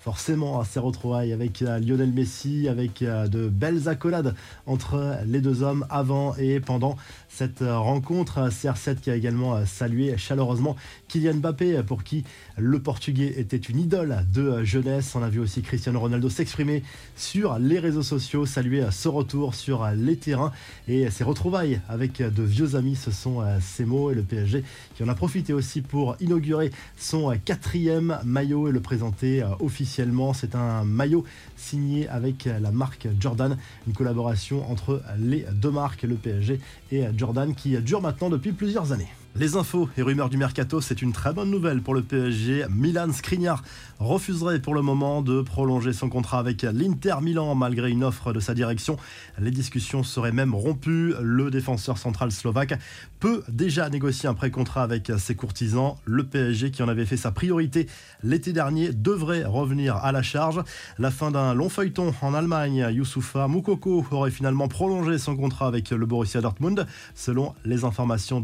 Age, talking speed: 20-39, 165 wpm